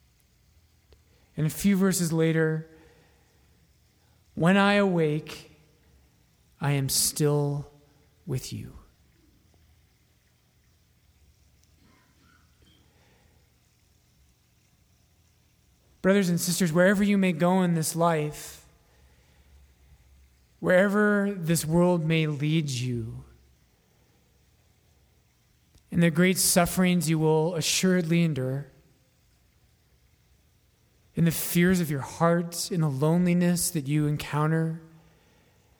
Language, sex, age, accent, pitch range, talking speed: English, male, 30-49, American, 110-175 Hz, 80 wpm